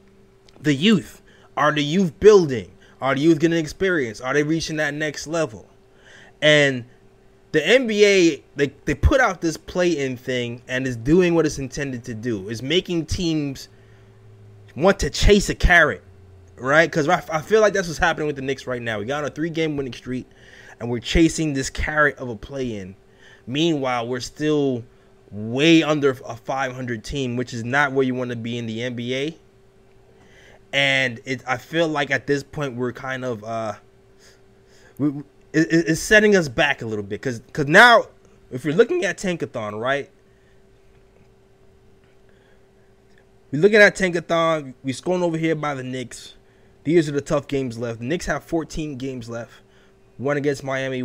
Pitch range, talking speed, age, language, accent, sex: 115-155 Hz, 180 wpm, 20-39, English, American, male